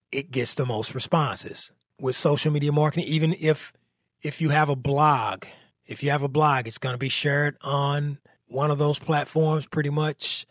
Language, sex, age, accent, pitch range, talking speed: English, male, 30-49, American, 110-150 Hz, 190 wpm